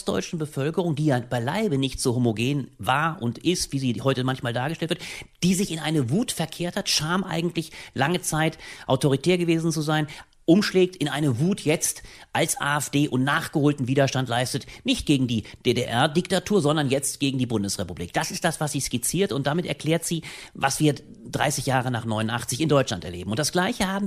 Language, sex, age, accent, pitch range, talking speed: German, male, 40-59, German, 125-165 Hz, 185 wpm